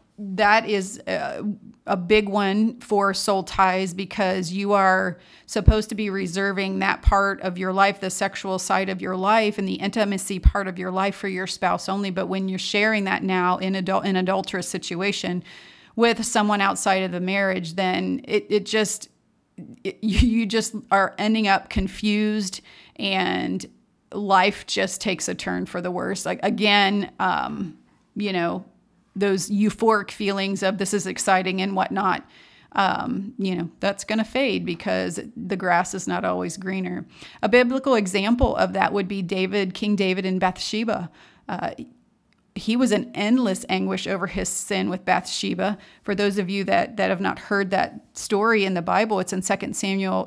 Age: 40-59